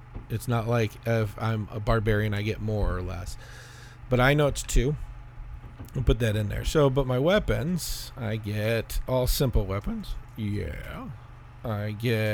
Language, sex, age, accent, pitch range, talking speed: English, male, 40-59, American, 105-145 Hz, 165 wpm